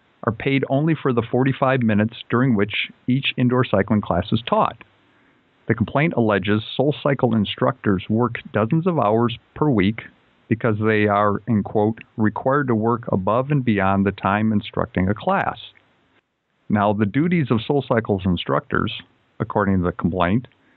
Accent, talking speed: American, 150 wpm